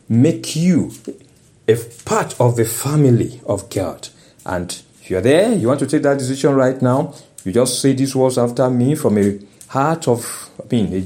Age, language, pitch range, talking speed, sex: 50-69, English, 115-155 Hz, 190 wpm, male